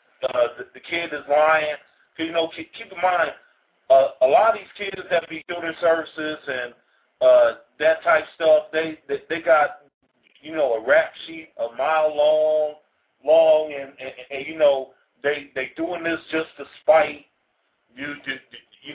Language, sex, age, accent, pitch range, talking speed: English, male, 40-59, American, 135-165 Hz, 175 wpm